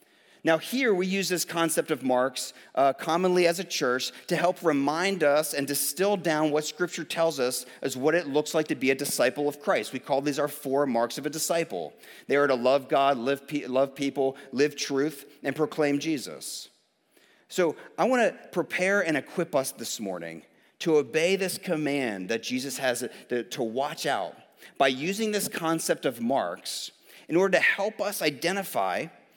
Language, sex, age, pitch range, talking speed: English, male, 40-59, 135-170 Hz, 180 wpm